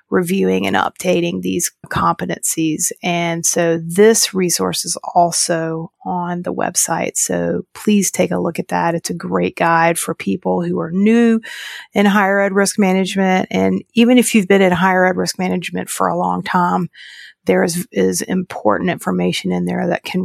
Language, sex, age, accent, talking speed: English, female, 40-59, American, 170 wpm